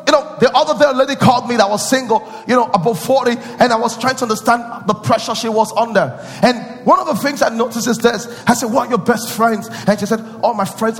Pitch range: 220-275 Hz